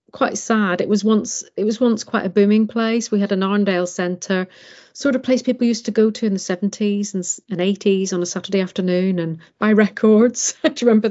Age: 40-59